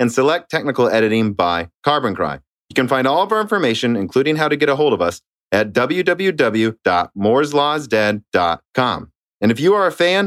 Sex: male